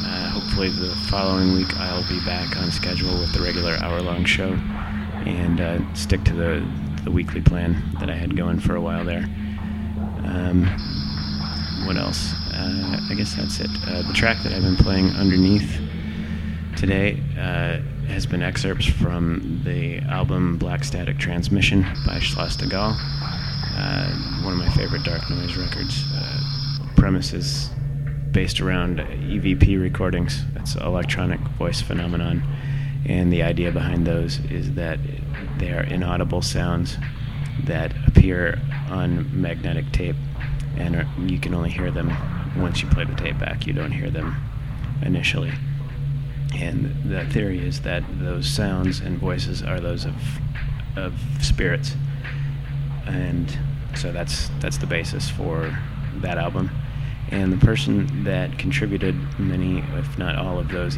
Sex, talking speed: male, 145 wpm